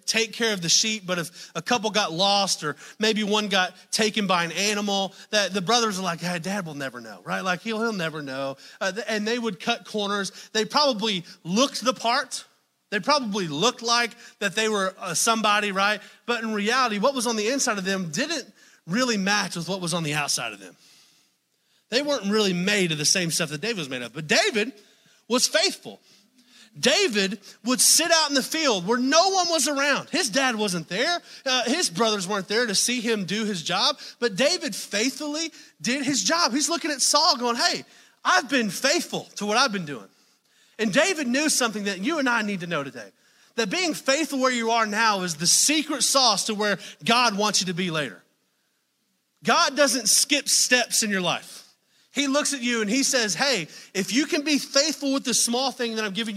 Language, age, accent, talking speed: English, 30-49, American, 210 wpm